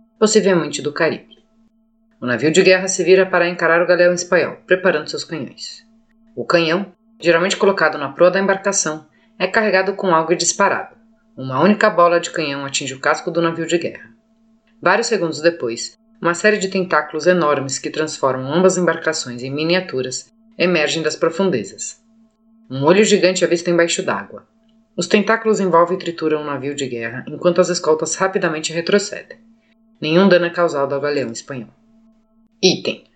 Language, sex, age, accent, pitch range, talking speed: Portuguese, female, 30-49, Brazilian, 160-215 Hz, 165 wpm